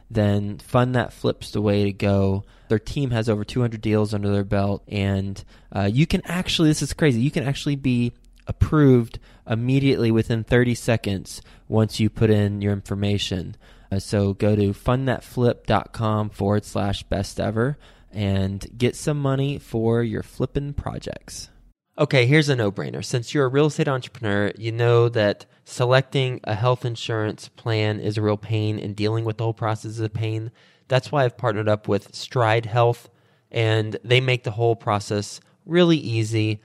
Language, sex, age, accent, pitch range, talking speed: English, male, 20-39, American, 105-130 Hz, 170 wpm